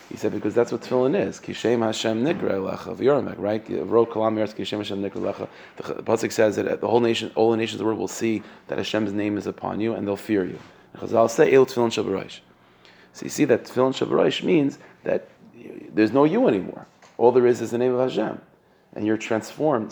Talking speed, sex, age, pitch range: 185 wpm, male, 30-49, 105-115 Hz